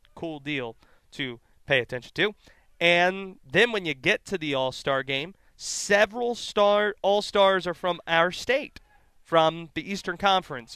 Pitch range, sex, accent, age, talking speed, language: 130-185 Hz, male, American, 30-49, 145 wpm, English